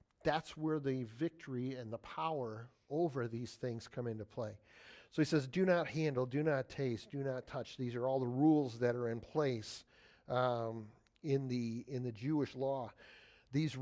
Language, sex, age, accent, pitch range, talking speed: English, male, 50-69, American, 120-150 Hz, 180 wpm